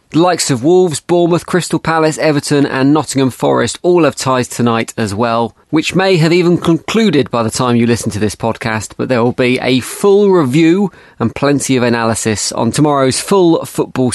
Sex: male